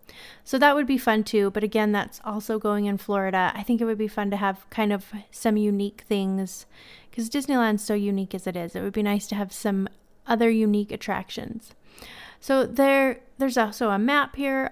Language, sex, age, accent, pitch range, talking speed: English, female, 30-49, American, 205-230 Hz, 205 wpm